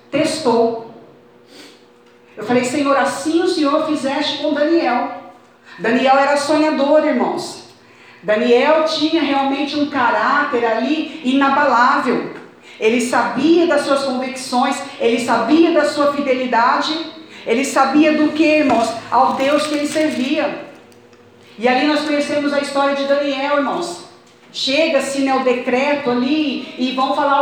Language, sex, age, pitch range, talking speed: Portuguese, female, 50-69, 250-300 Hz, 125 wpm